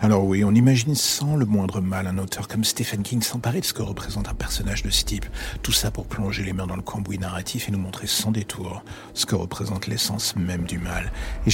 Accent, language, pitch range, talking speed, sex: French, French, 95-115 Hz, 240 wpm, male